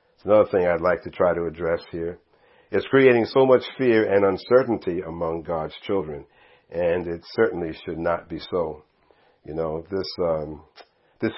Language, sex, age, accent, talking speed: English, male, 50-69, American, 165 wpm